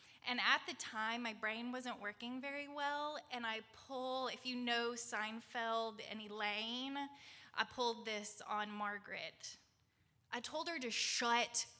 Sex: female